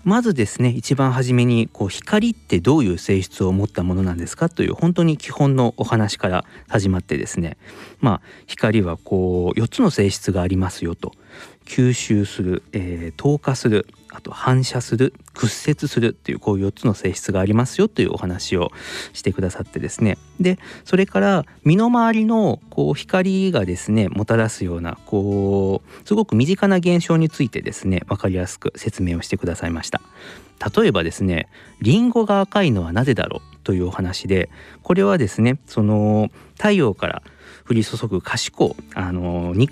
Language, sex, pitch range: Japanese, male, 95-145 Hz